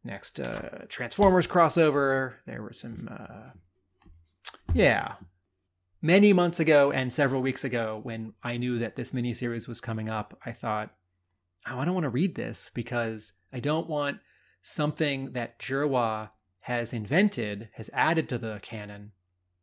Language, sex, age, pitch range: English, male, 30-49, 110-135 Hz